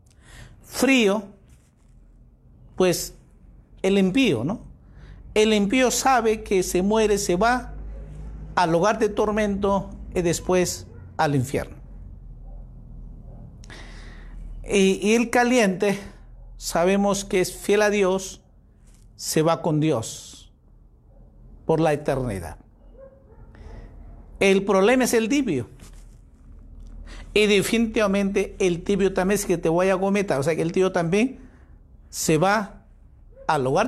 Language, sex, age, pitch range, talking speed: Spanish, male, 50-69, 155-210 Hz, 115 wpm